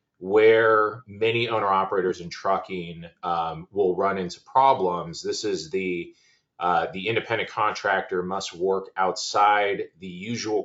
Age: 30-49